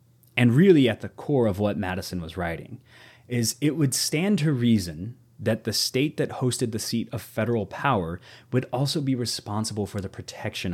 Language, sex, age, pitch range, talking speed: English, male, 30-49, 100-125 Hz, 185 wpm